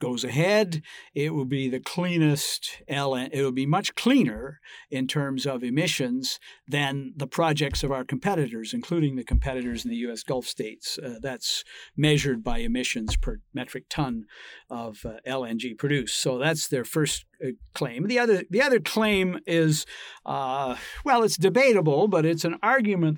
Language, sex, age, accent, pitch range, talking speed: English, male, 50-69, American, 135-170 Hz, 165 wpm